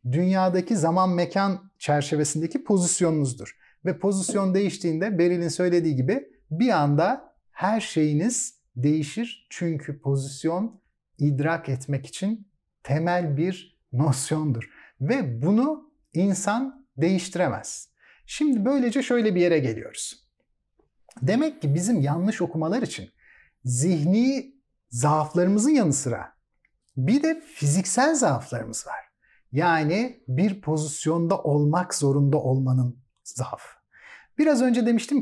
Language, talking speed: Turkish, 100 wpm